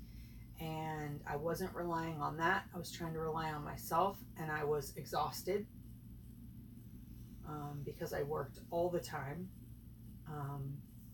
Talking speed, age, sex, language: 135 wpm, 30-49, female, English